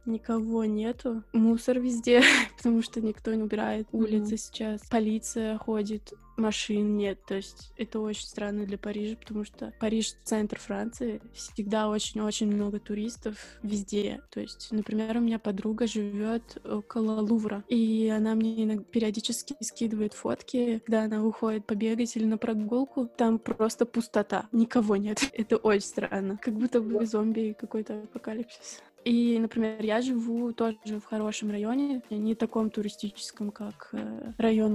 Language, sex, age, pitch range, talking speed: Russian, female, 20-39, 210-230 Hz, 140 wpm